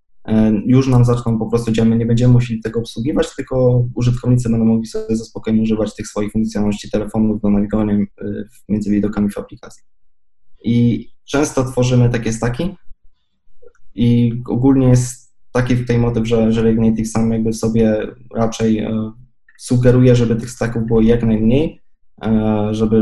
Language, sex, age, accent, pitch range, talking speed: Polish, male, 20-39, native, 110-120 Hz, 150 wpm